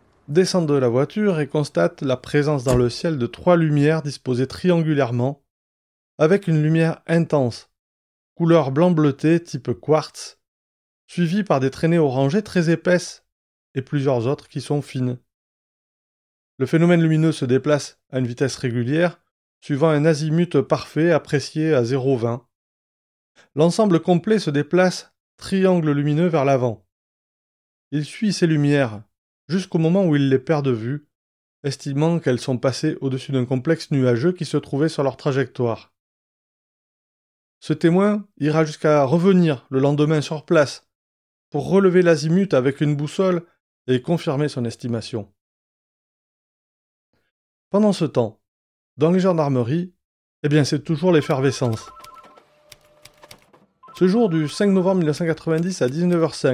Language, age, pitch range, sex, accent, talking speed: French, 20-39, 125-170 Hz, male, French, 135 wpm